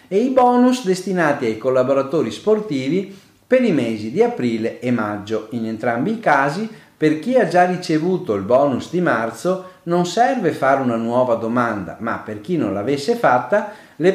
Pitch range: 120-195 Hz